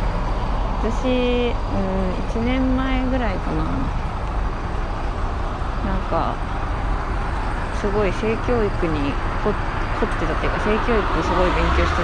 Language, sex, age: Japanese, female, 20-39